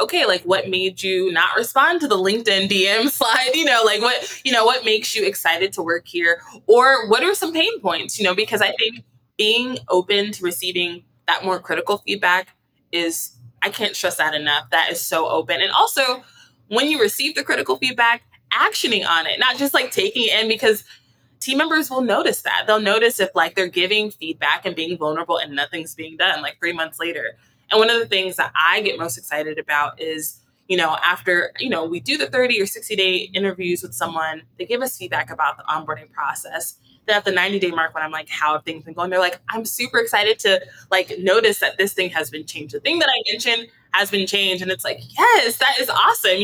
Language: English